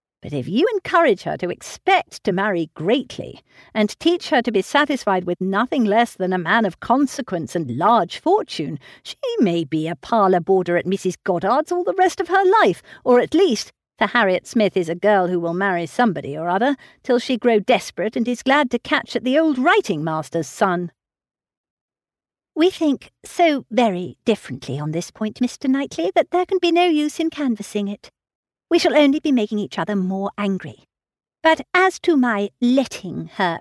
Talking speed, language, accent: 190 wpm, English, British